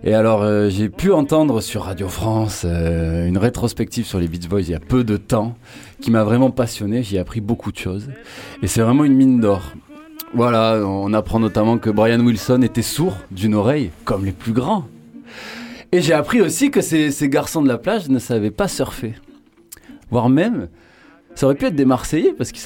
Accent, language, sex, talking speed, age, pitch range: French, French, male, 205 wpm, 30-49, 105-140 Hz